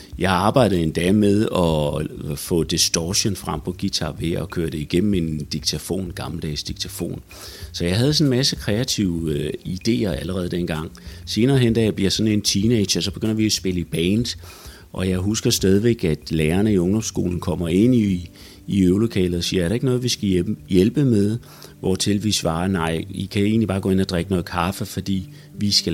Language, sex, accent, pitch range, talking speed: Danish, male, native, 85-110 Hz, 195 wpm